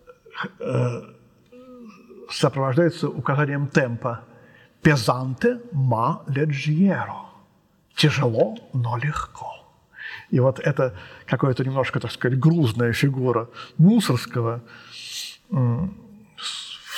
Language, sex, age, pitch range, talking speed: Russian, male, 50-69, 135-195 Hz, 80 wpm